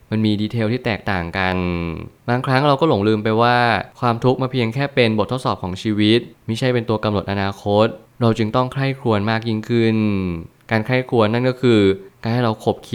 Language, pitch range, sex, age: Thai, 105-120 Hz, male, 20-39